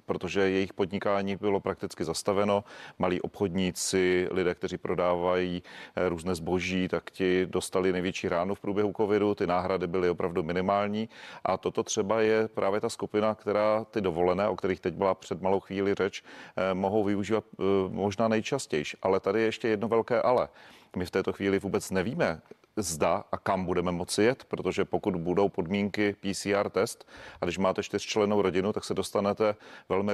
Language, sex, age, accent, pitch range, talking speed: Czech, male, 40-59, native, 95-105 Hz, 165 wpm